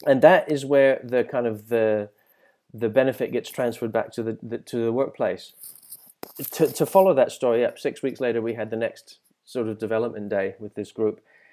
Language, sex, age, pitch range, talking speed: English, male, 20-39, 115-155 Hz, 205 wpm